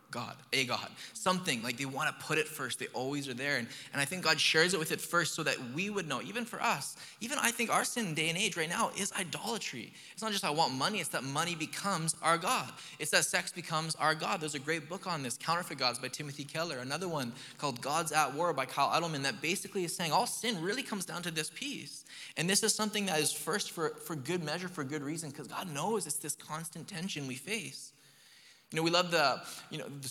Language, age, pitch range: English, 20-39, 130-175 Hz